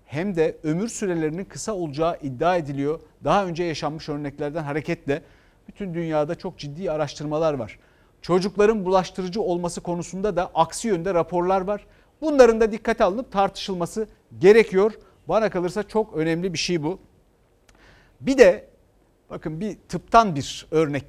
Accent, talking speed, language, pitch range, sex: native, 135 wpm, Turkish, 150-200 Hz, male